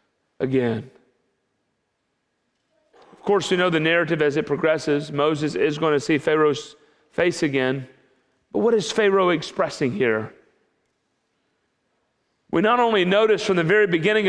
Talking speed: 135 wpm